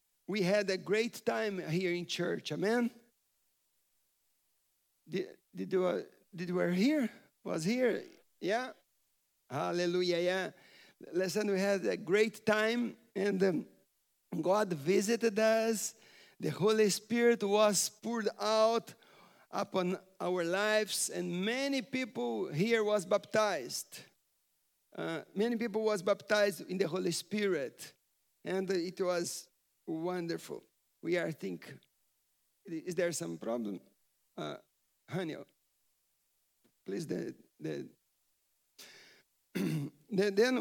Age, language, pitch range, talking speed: 50-69, English, 185-230 Hz, 105 wpm